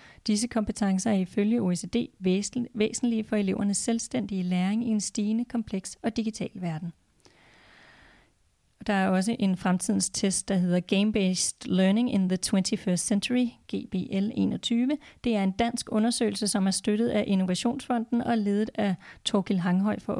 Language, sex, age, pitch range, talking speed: Danish, female, 30-49, 195-225 Hz, 145 wpm